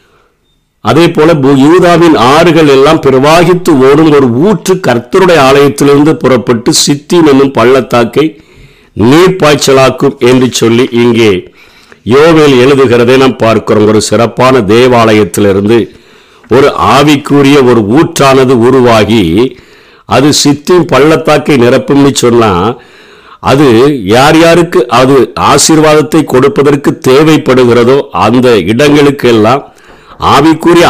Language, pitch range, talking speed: Tamil, 125-155 Hz, 85 wpm